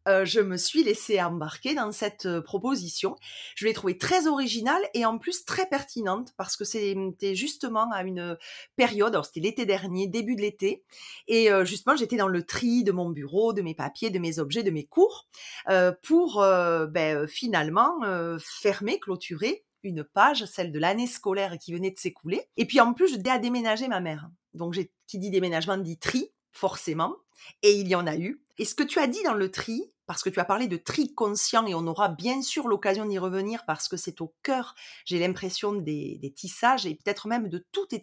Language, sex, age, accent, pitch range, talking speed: French, female, 30-49, French, 175-230 Hz, 215 wpm